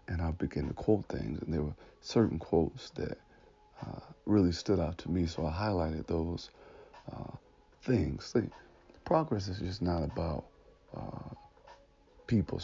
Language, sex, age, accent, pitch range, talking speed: English, male, 50-69, American, 80-100 Hz, 150 wpm